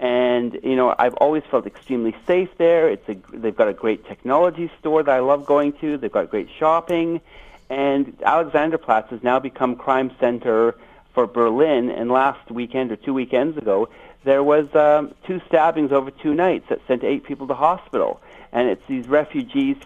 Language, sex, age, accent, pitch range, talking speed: English, male, 60-79, American, 115-145 Hz, 180 wpm